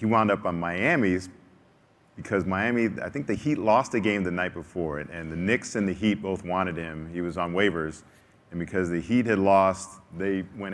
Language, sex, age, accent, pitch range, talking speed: English, male, 40-59, American, 85-100 Hz, 210 wpm